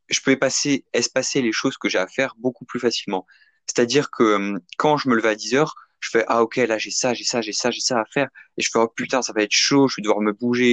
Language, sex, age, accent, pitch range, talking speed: French, male, 20-39, French, 110-135 Hz, 295 wpm